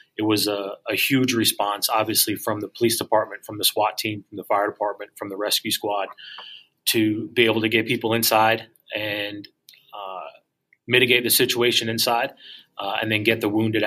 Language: English